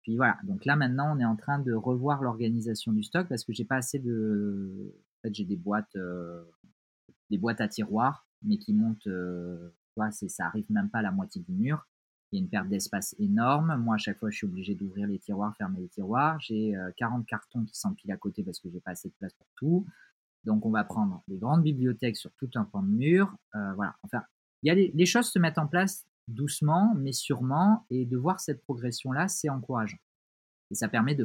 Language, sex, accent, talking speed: French, male, French, 230 wpm